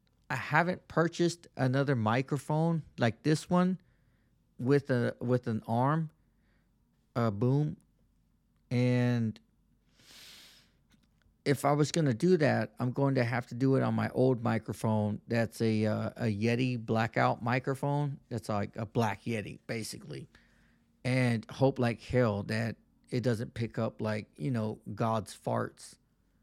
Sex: male